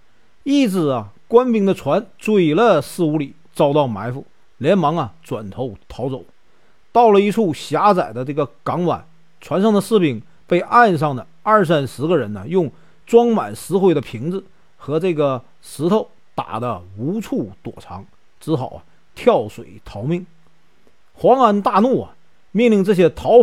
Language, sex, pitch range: Chinese, male, 140-215 Hz